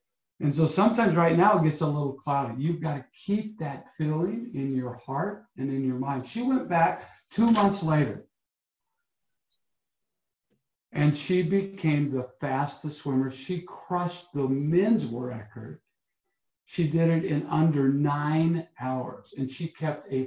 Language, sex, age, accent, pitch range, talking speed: English, male, 60-79, American, 130-170 Hz, 150 wpm